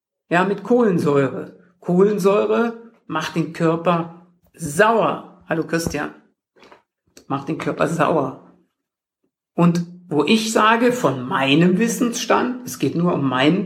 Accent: German